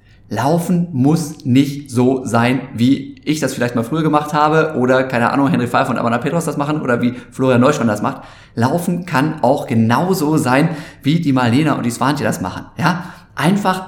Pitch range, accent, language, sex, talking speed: 125-160 Hz, German, German, male, 190 wpm